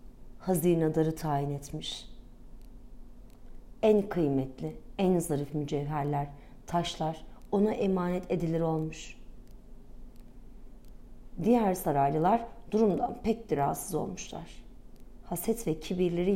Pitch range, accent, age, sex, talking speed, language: 165-205 Hz, native, 40-59, female, 80 wpm, Turkish